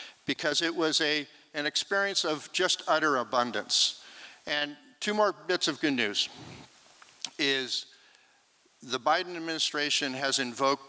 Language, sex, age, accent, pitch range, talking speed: English, male, 50-69, American, 140-170 Hz, 125 wpm